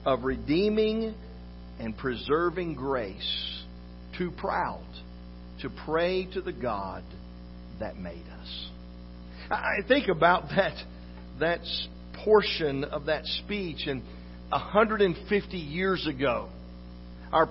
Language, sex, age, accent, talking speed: English, male, 50-69, American, 100 wpm